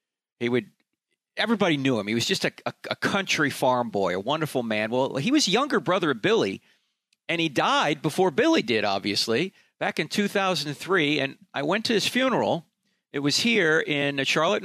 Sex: male